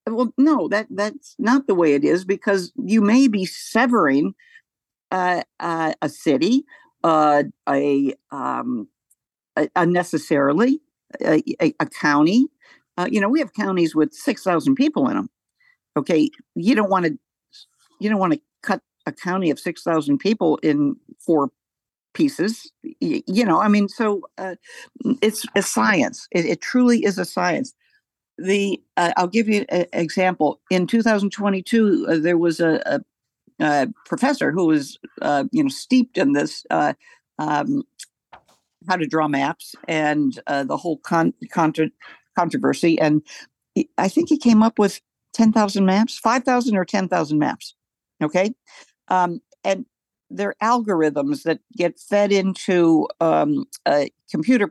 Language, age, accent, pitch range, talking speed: English, 50-69, American, 165-255 Hz, 150 wpm